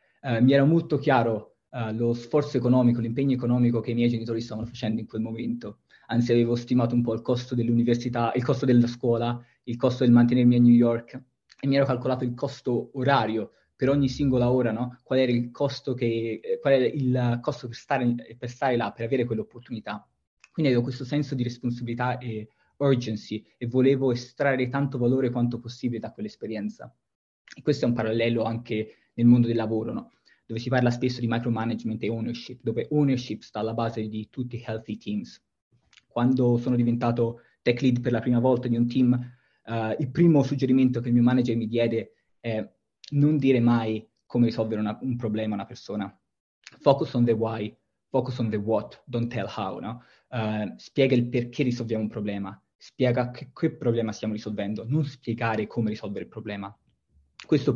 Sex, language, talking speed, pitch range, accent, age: male, Italian, 190 wpm, 115-130 Hz, native, 20-39